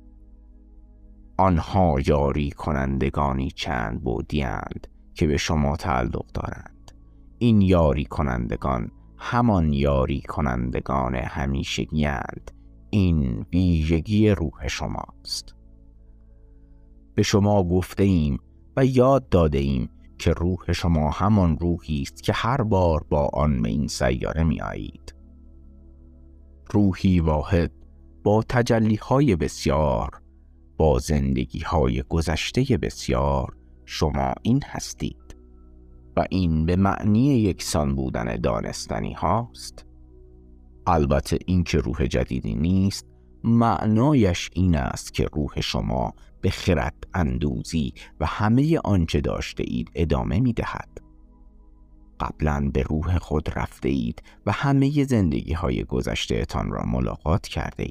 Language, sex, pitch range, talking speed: Persian, male, 65-95 Hz, 105 wpm